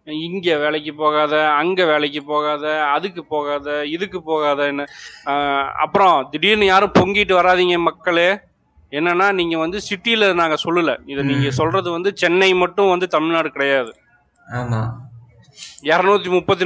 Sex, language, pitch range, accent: male, Tamil, 140-185 Hz, native